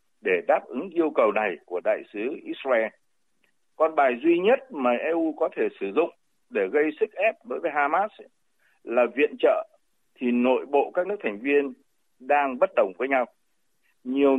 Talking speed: 180 wpm